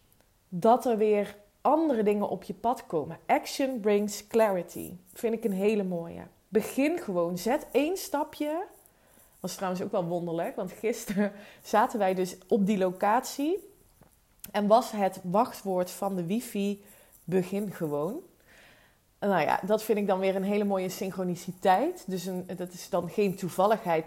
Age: 20-39